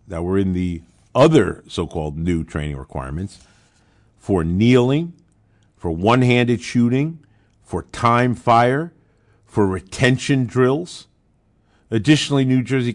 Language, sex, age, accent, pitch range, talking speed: English, male, 50-69, American, 105-160 Hz, 105 wpm